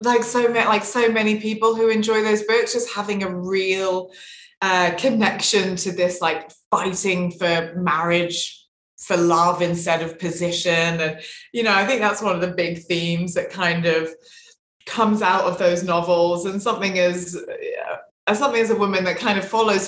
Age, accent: 20-39, British